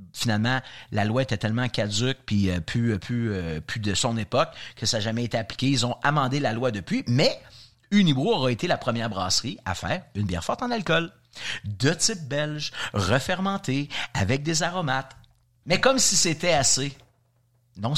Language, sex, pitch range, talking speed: French, male, 110-140 Hz, 180 wpm